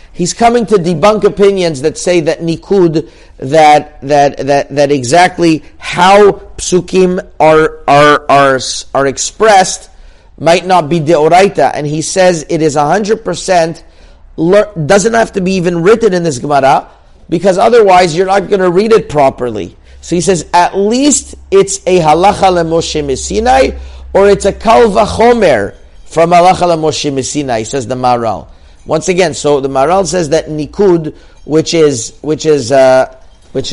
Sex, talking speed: male, 150 wpm